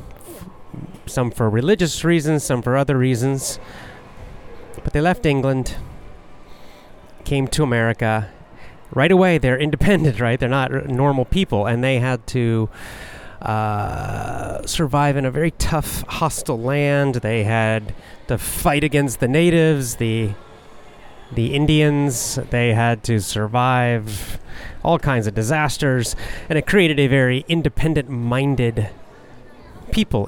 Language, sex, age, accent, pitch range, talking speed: English, male, 30-49, American, 115-150 Hz, 120 wpm